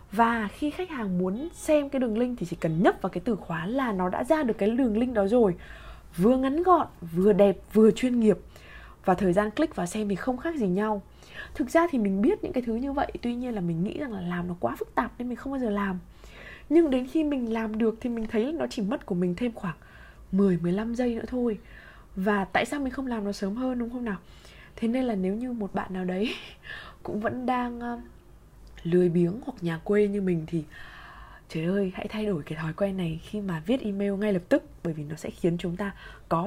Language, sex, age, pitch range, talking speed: Vietnamese, female, 20-39, 190-250 Hz, 250 wpm